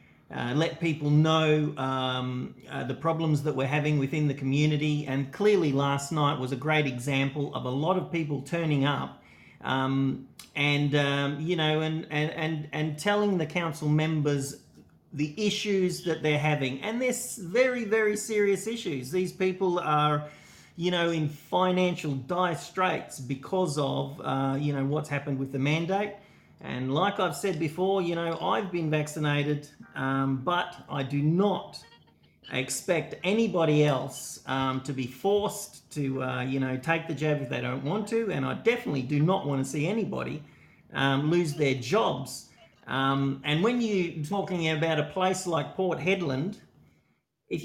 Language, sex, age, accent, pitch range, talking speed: English, male, 40-59, Australian, 140-180 Hz, 165 wpm